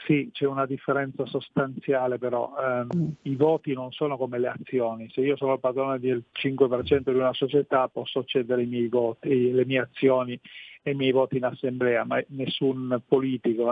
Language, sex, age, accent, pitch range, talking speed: Italian, male, 40-59, native, 125-140 Hz, 180 wpm